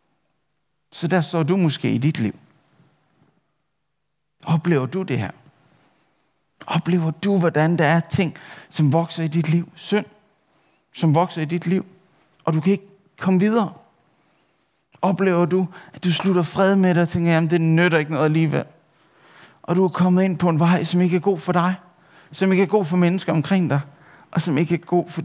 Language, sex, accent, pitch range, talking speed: Danish, male, native, 155-180 Hz, 190 wpm